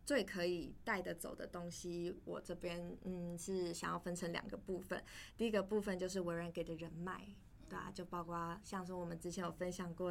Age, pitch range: 20-39, 175-200 Hz